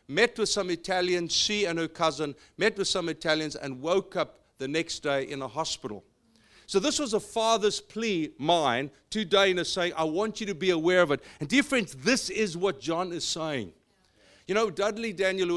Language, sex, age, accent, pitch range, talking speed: English, male, 50-69, South African, 135-180 Hz, 205 wpm